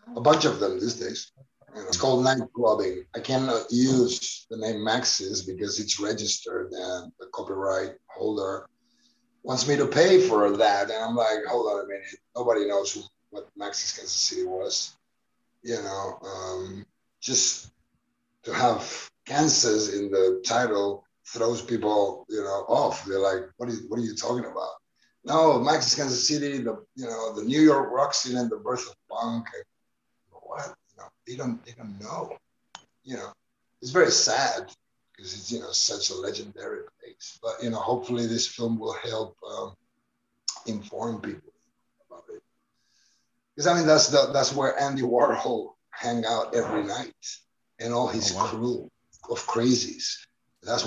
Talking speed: 165 wpm